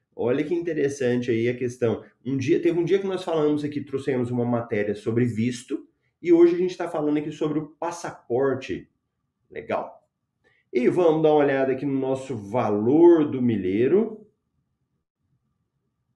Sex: male